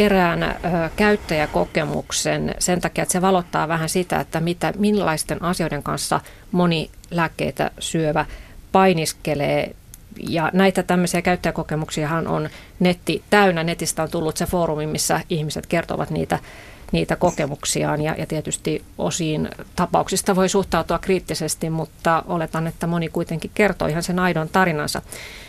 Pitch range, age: 155-185 Hz, 30-49